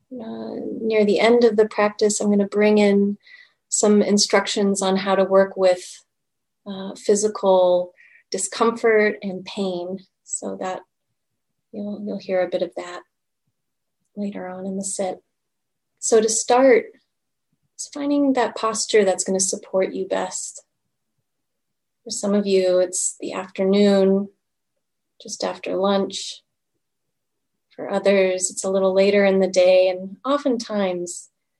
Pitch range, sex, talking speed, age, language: 185-220 Hz, female, 135 wpm, 30-49, English